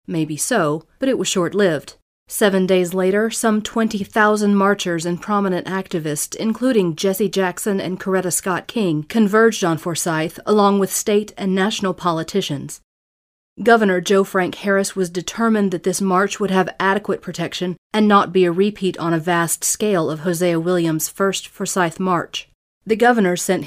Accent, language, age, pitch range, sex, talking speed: American, English, 40-59, 170-200 Hz, female, 155 wpm